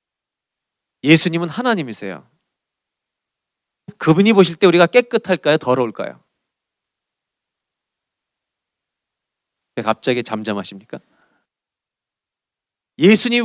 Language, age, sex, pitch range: Korean, 40-59, male, 130-190 Hz